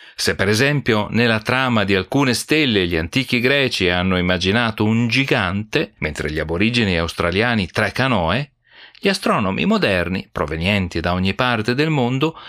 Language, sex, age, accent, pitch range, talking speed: Italian, male, 40-59, native, 95-135 Hz, 145 wpm